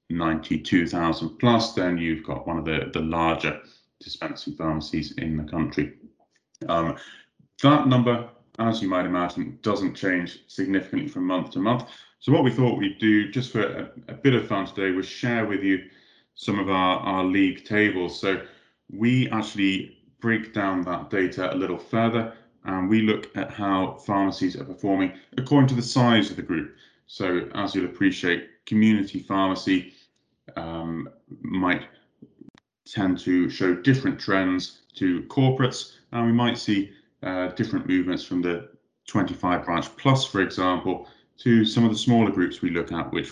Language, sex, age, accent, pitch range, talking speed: English, male, 30-49, British, 90-115 Hz, 165 wpm